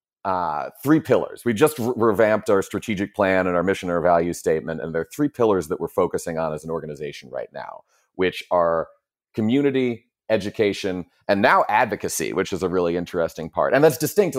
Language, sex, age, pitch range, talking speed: English, male, 30-49, 90-130 Hz, 190 wpm